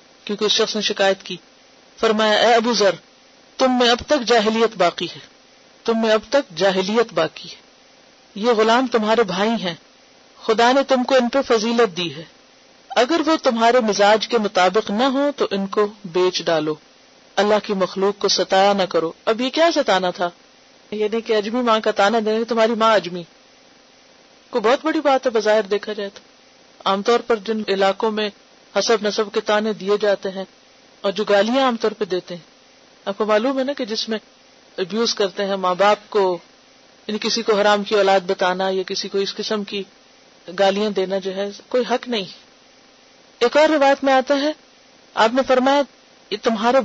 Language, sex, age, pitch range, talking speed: Urdu, female, 40-59, 200-260 Hz, 185 wpm